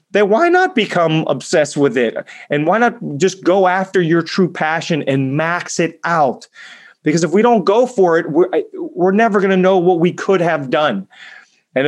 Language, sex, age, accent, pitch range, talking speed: English, male, 30-49, American, 140-185 Hz, 195 wpm